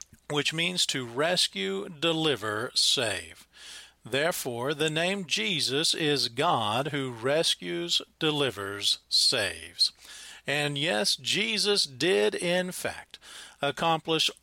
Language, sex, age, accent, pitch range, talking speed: English, male, 40-59, American, 130-175 Hz, 95 wpm